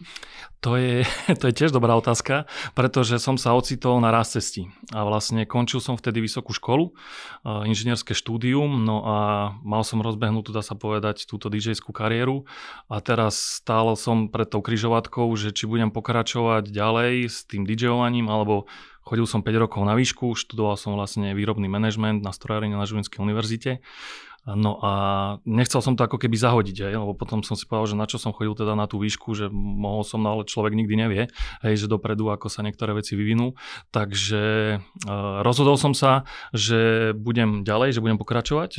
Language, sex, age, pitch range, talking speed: Slovak, male, 30-49, 105-120 Hz, 180 wpm